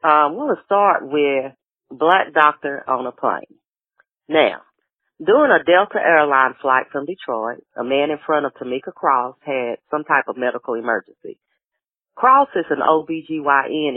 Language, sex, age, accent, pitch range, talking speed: English, female, 40-59, American, 135-185 Hz, 150 wpm